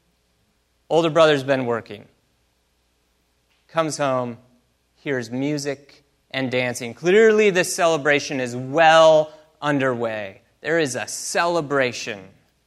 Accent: American